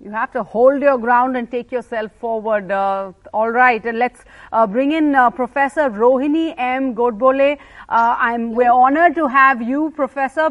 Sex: female